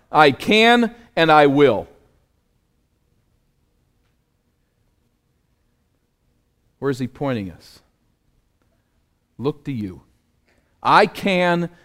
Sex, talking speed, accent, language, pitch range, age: male, 75 wpm, American, English, 115-175 Hz, 50-69